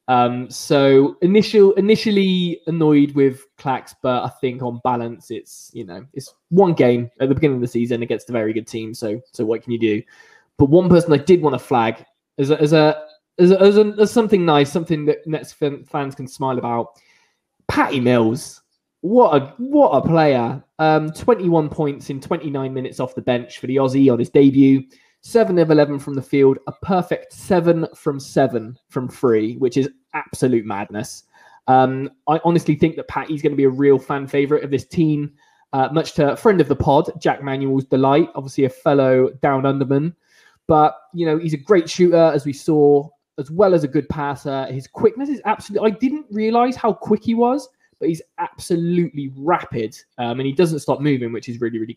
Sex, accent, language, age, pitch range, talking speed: male, British, English, 20-39, 130-170 Hz, 200 wpm